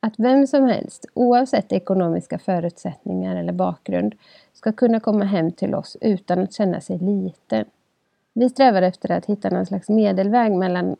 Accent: native